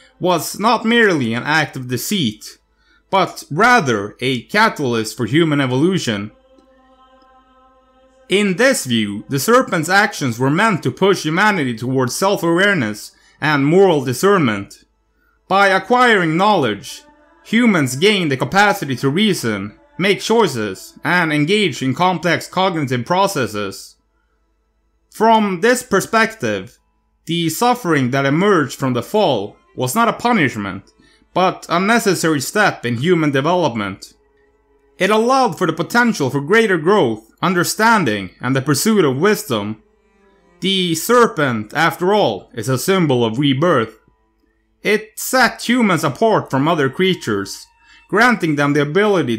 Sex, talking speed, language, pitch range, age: male, 125 wpm, English, 130-210 Hz, 30-49